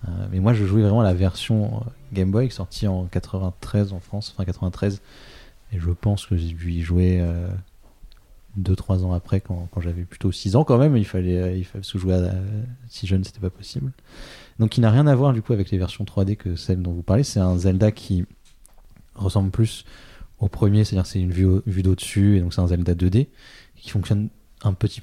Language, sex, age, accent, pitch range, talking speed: French, male, 30-49, French, 95-110 Hz, 215 wpm